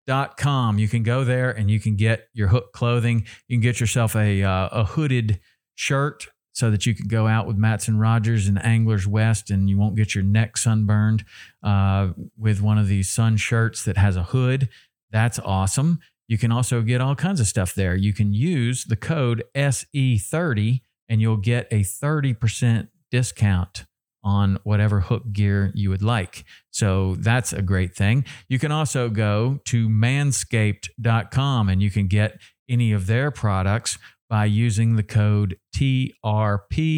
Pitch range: 105-120 Hz